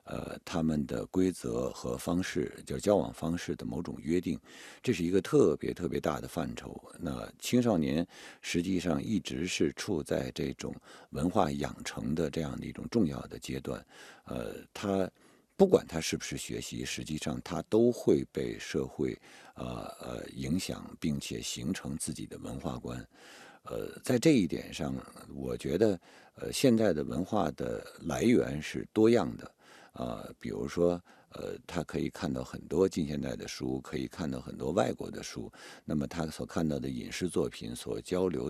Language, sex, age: Chinese, male, 50-69